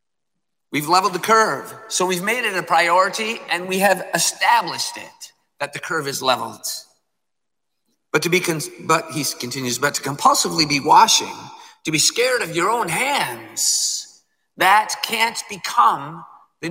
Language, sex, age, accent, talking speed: English, male, 50-69, American, 150 wpm